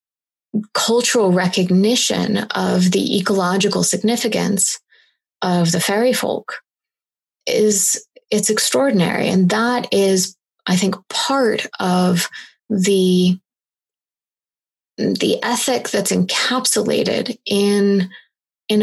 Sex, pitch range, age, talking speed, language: female, 185-220 Hz, 20-39, 85 wpm, English